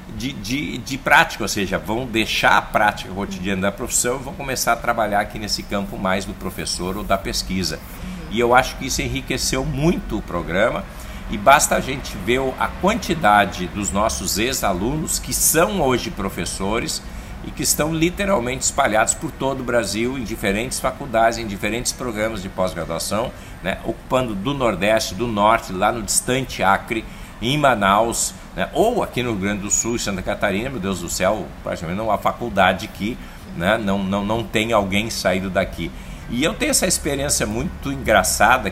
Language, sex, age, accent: Portuguese, male, 60-79, Brazilian